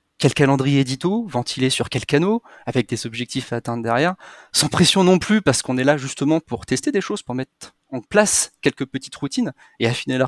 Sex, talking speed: male, 210 wpm